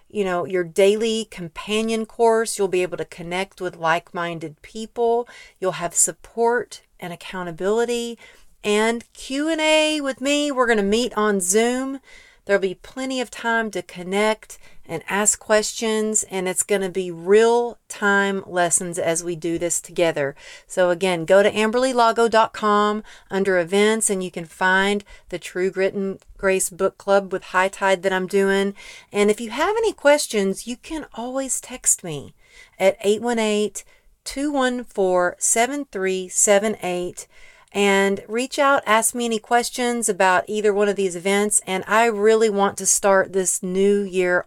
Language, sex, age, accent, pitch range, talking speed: English, female, 40-59, American, 185-230 Hz, 150 wpm